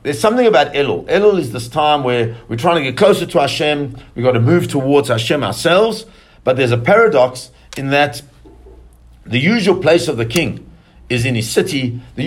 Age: 50-69